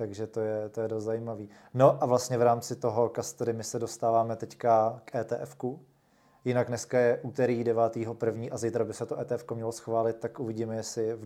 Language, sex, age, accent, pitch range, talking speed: Czech, male, 20-39, native, 110-120 Hz, 195 wpm